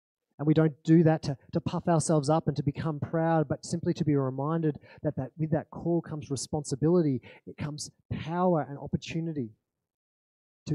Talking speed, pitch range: 180 wpm, 110-145 Hz